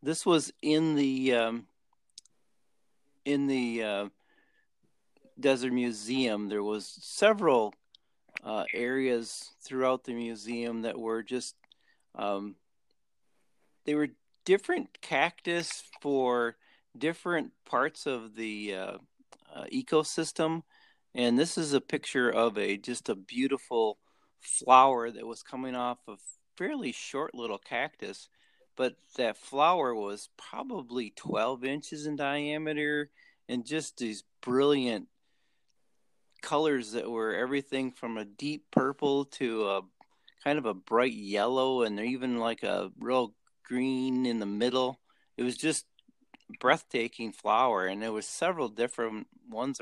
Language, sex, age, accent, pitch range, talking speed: English, male, 40-59, American, 115-145 Hz, 125 wpm